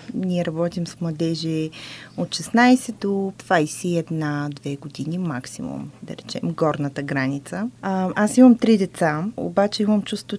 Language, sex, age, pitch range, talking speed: Bulgarian, female, 20-39, 165-205 Hz, 125 wpm